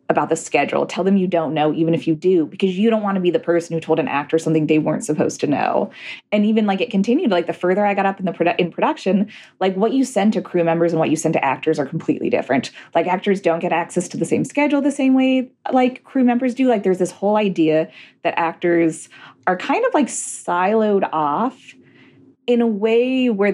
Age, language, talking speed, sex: 20-39, English, 240 wpm, female